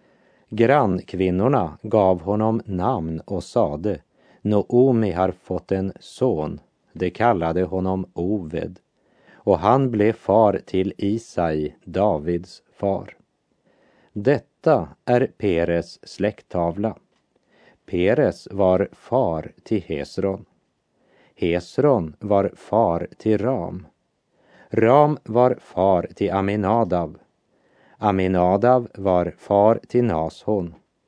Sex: male